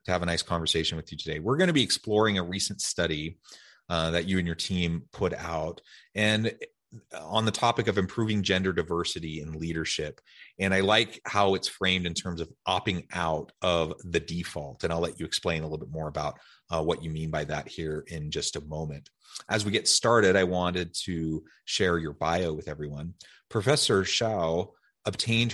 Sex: male